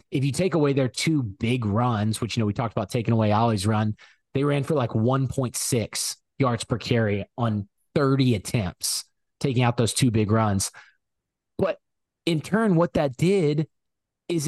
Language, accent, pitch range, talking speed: English, American, 115-145 Hz, 175 wpm